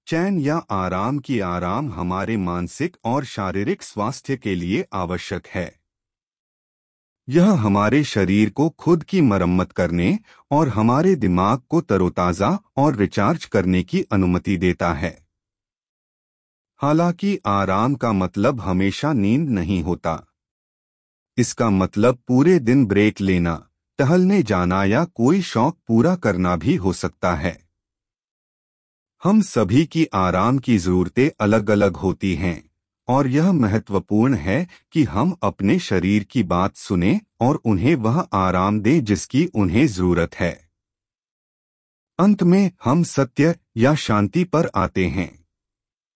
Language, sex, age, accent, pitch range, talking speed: Hindi, male, 30-49, native, 90-140 Hz, 125 wpm